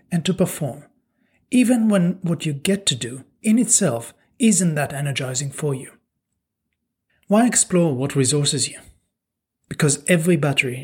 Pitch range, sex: 145-180 Hz, male